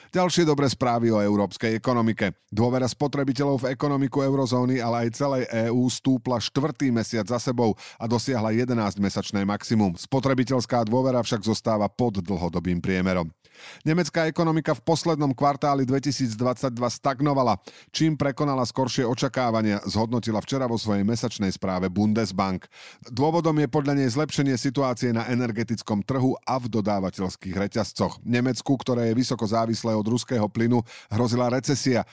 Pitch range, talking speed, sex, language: 110-135 Hz, 135 wpm, male, Slovak